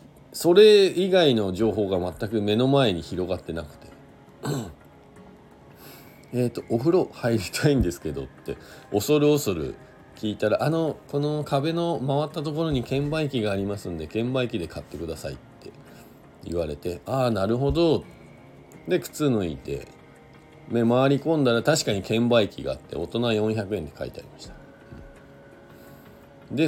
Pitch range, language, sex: 95-150 Hz, Japanese, male